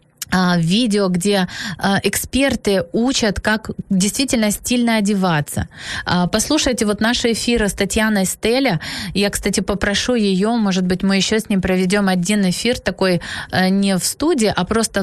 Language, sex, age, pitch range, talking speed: Ukrainian, female, 20-39, 175-210 Hz, 135 wpm